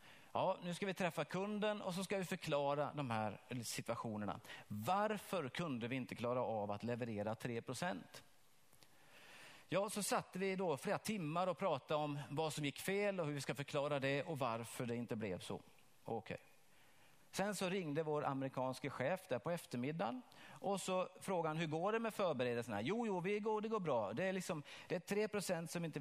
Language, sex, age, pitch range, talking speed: Swedish, male, 40-59, 140-195 Hz, 190 wpm